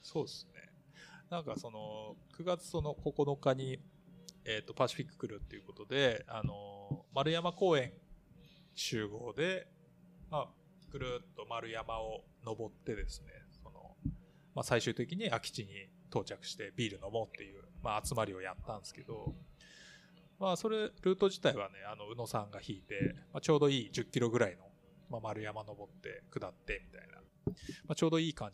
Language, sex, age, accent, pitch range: Japanese, male, 20-39, native, 120-175 Hz